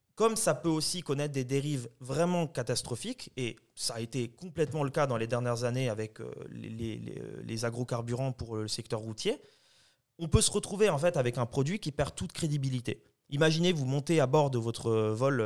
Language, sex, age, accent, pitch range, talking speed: French, male, 30-49, French, 125-165 Hz, 185 wpm